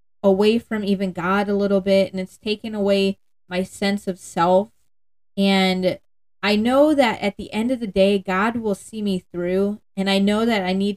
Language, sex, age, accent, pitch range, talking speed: English, female, 20-39, American, 185-220 Hz, 195 wpm